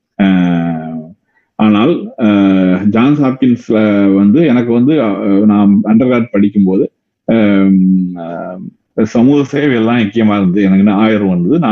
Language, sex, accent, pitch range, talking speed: Tamil, male, native, 100-130 Hz, 110 wpm